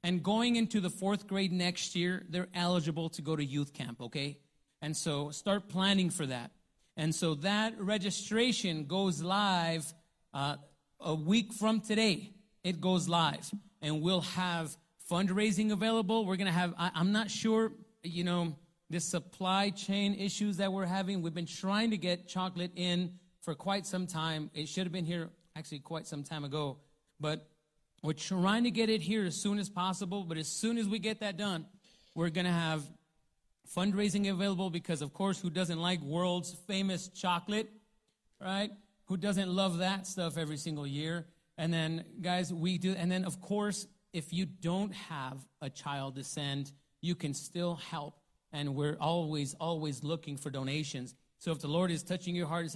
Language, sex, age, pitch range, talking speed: English, male, 30-49, 160-195 Hz, 180 wpm